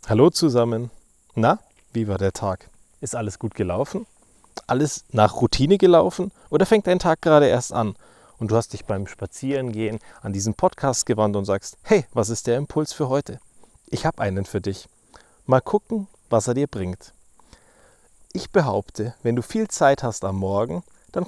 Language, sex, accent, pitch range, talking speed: German, male, German, 105-145 Hz, 175 wpm